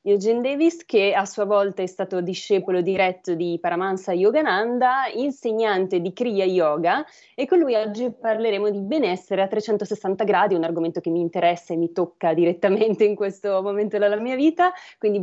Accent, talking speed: native, 170 wpm